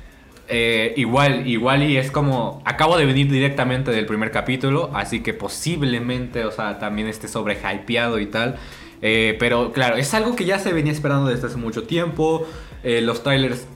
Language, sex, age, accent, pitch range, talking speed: Spanish, male, 20-39, Mexican, 125-150 Hz, 180 wpm